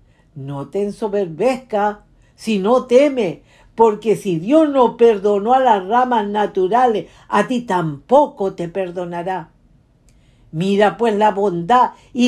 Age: 50-69